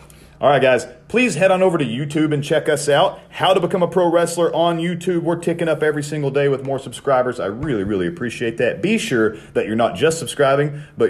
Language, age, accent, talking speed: English, 40-59, American, 235 wpm